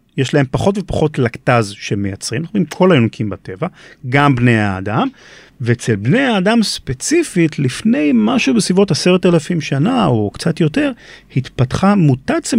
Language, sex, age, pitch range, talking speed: Hebrew, male, 40-59, 115-165 Hz, 140 wpm